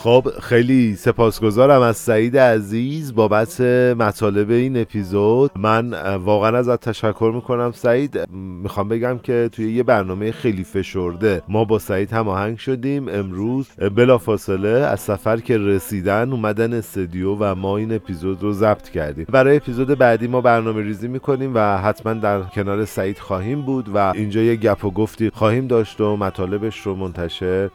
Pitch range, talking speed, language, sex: 100-125 Hz, 150 wpm, Persian, male